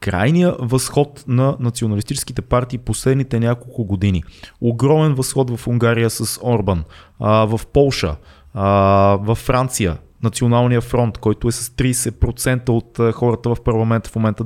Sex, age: male, 20-39